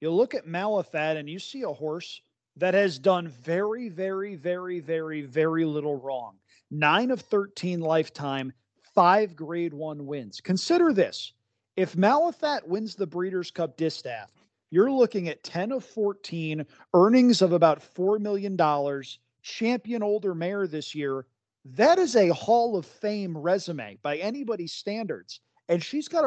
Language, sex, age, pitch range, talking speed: English, male, 40-59, 155-205 Hz, 150 wpm